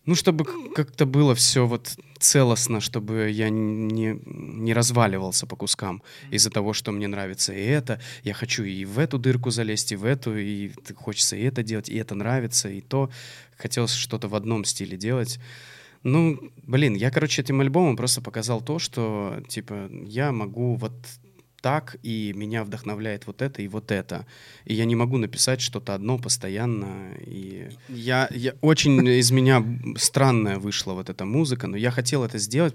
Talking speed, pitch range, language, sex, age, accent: 165 wpm, 105-130 Hz, Russian, male, 20-39, native